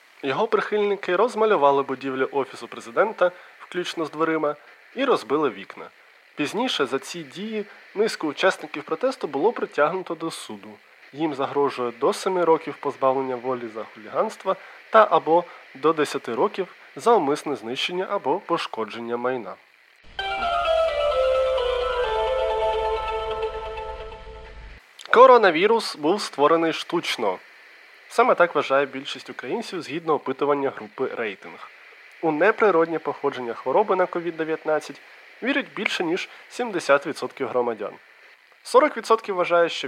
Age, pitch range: 20-39, 135-220 Hz